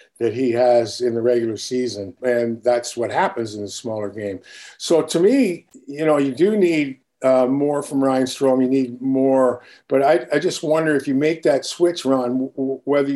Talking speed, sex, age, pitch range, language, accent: 205 wpm, male, 50-69, 120-150 Hz, English, American